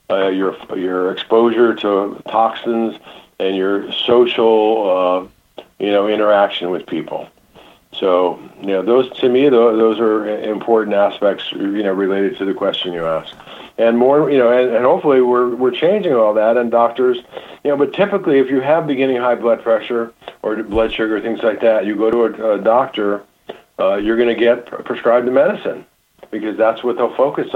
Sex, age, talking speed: male, 50-69, 180 wpm